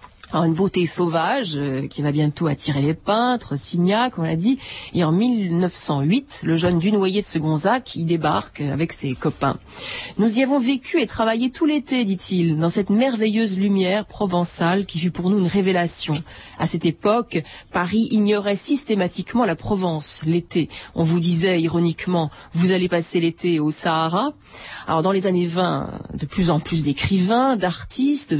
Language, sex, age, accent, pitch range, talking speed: French, female, 40-59, French, 155-210 Hz, 165 wpm